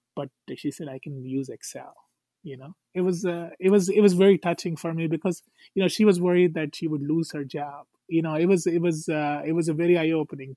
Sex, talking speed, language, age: male, 255 wpm, English, 20-39